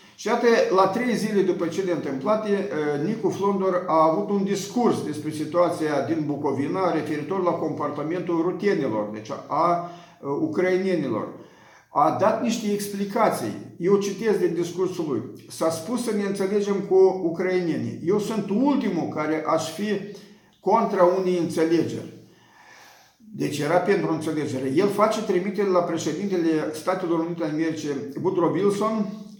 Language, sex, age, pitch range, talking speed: Romanian, male, 50-69, 155-195 Hz, 135 wpm